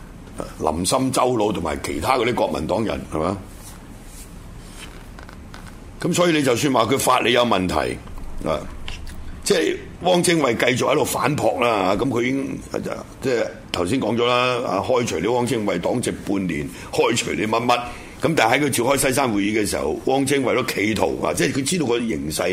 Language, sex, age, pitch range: Chinese, male, 60-79, 90-125 Hz